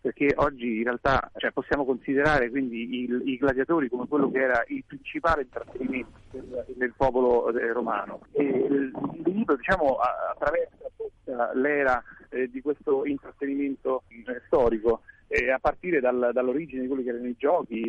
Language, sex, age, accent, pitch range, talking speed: Italian, male, 40-59, native, 125-150 Hz, 140 wpm